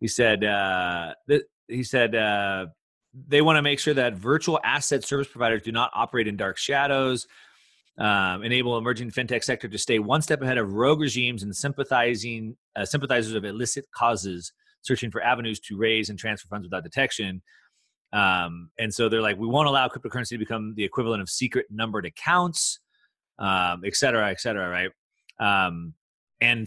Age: 30-49